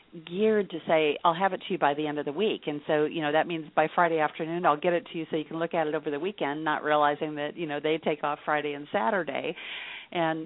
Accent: American